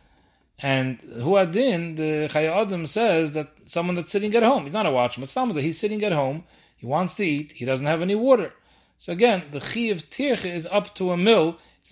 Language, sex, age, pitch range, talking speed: English, male, 30-49, 150-195 Hz, 210 wpm